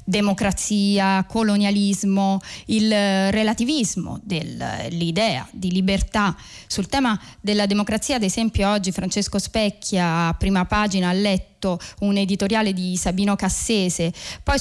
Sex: female